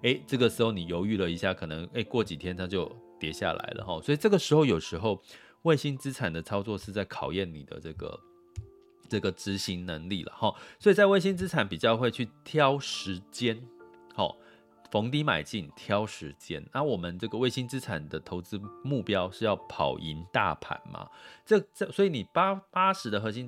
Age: 30-49